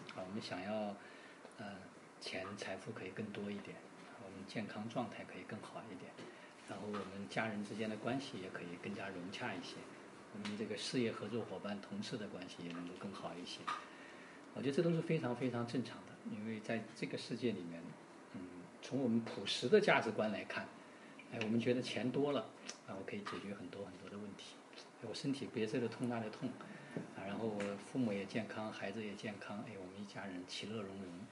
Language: Chinese